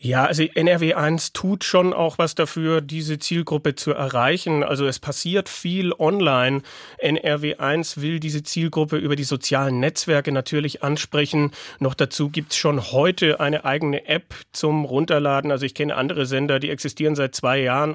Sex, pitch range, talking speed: male, 135-160 Hz, 160 wpm